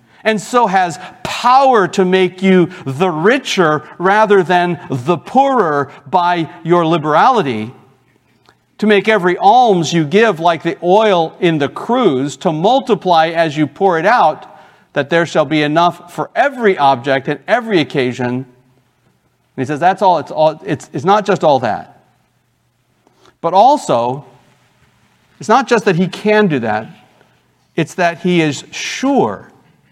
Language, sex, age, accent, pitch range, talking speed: English, male, 50-69, American, 130-185 Hz, 150 wpm